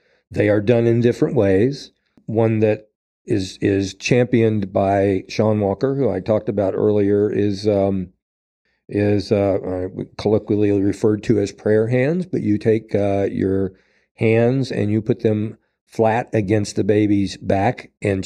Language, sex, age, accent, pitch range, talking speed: English, male, 50-69, American, 100-115 Hz, 150 wpm